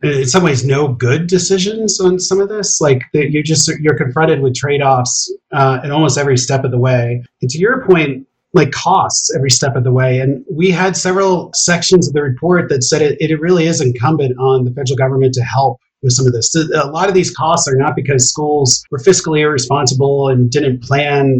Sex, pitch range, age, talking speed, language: male, 130-165 Hz, 30-49, 215 wpm, English